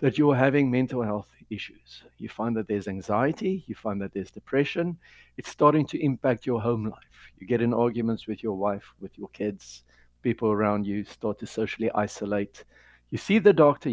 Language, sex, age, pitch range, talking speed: English, male, 60-79, 105-130 Hz, 190 wpm